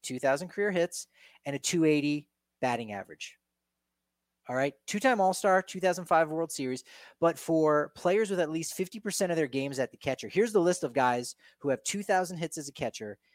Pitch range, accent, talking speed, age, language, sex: 130-170 Hz, American, 180 wpm, 30-49, English, male